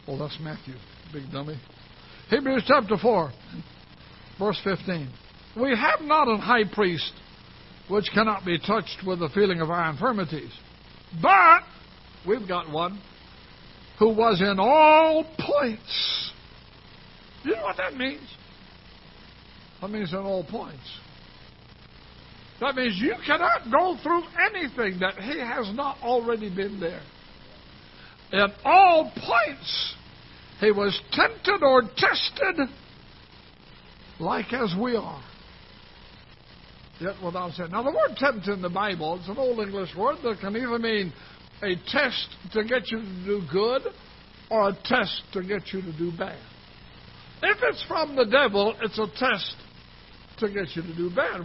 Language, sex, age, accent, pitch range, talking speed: English, male, 60-79, American, 180-255 Hz, 140 wpm